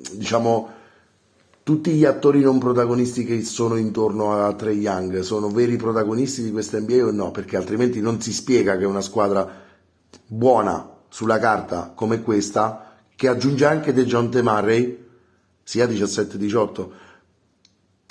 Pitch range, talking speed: 105-120 Hz, 135 wpm